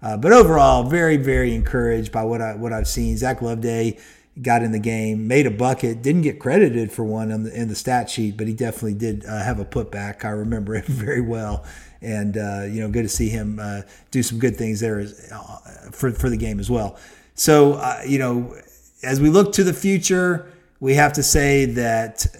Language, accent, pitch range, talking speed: English, American, 110-135 Hz, 220 wpm